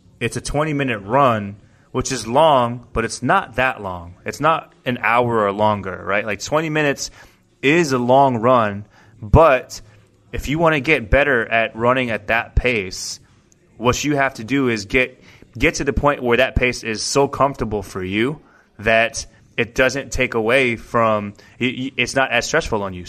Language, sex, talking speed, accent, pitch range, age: English, male, 180 wpm, American, 110-140 Hz, 20-39